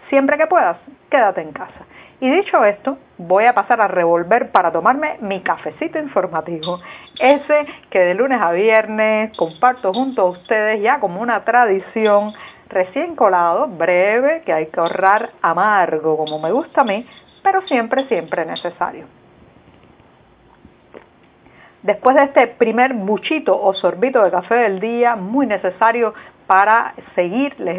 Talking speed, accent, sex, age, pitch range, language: 145 wpm, American, female, 50-69, 195-270 Hz, Spanish